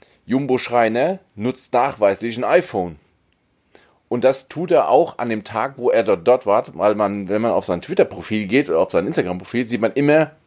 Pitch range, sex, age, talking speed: 100-135 Hz, male, 30-49, 190 wpm